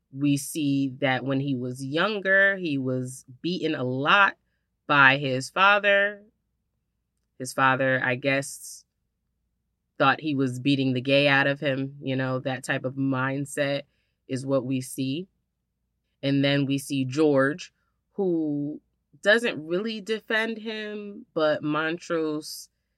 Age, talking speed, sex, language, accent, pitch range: 30-49, 130 wpm, female, English, American, 130-150 Hz